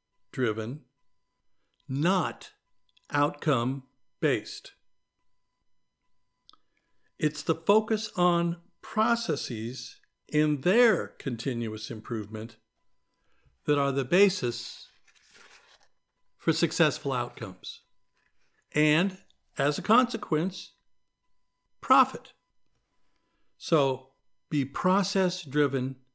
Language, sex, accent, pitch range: English, male, American, 120-150 Hz